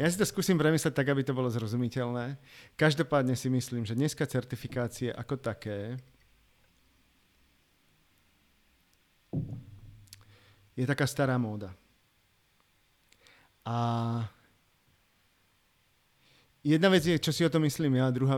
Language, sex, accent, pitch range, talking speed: Czech, male, native, 115-145 Hz, 115 wpm